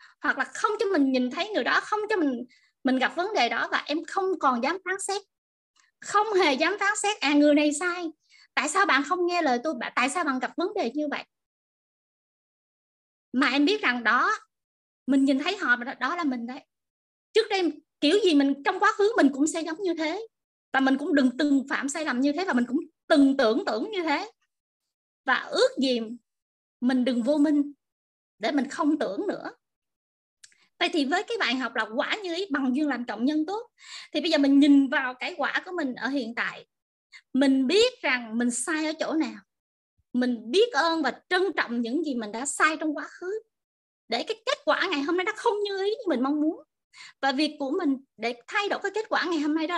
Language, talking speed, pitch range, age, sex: Vietnamese, 225 wpm, 275-380 Hz, 20-39, female